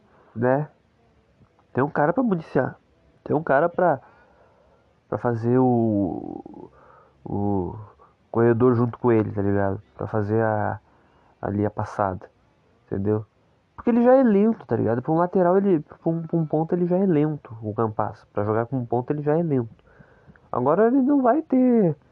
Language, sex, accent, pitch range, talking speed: Portuguese, male, Brazilian, 115-170 Hz, 170 wpm